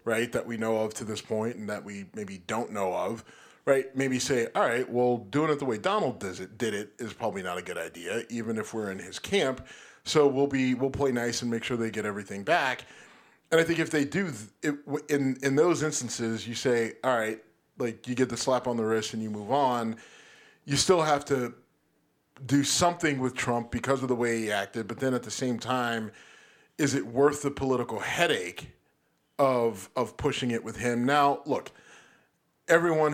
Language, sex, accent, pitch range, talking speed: English, male, American, 115-140 Hz, 210 wpm